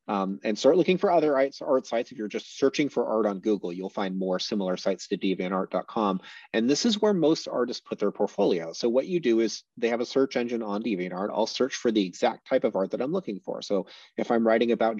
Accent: American